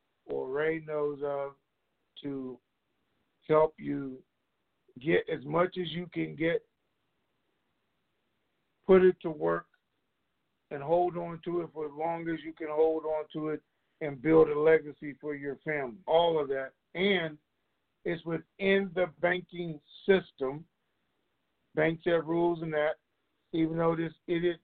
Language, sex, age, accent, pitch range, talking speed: English, male, 50-69, American, 145-170 Hz, 140 wpm